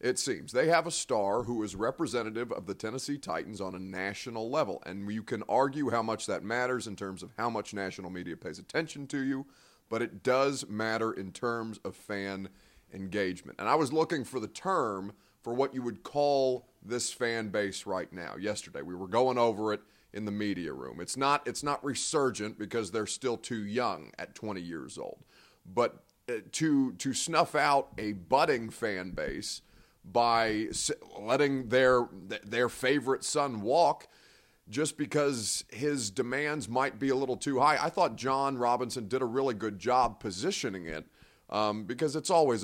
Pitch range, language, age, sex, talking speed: 105-135 Hz, English, 30-49, male, 180 wpm